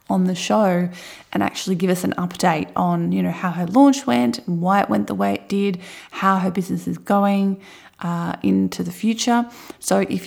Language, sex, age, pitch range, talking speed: English, female, 20-39, 175-205 Hz, 200 wpm